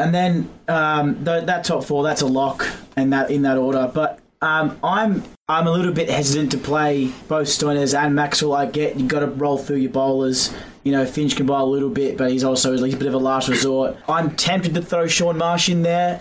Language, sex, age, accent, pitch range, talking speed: English, male, 20-39, Australian, 140-155 Hz, 235 wpm